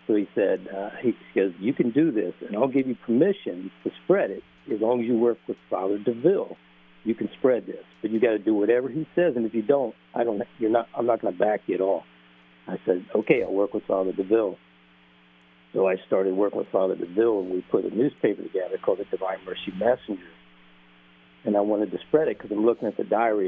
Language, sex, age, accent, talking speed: English, male, 60-79, American, 235 wpm